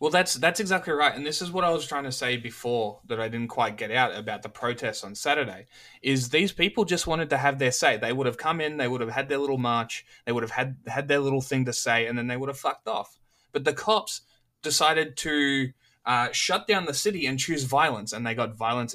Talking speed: 255 wpm